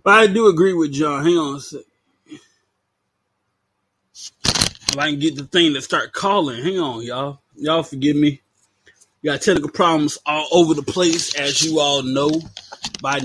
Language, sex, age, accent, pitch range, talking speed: English, male, 20-39, American, 100-155 Hz, 170 wpm